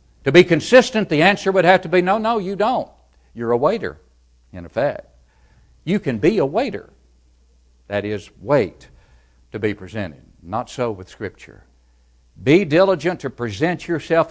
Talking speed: 160 wpm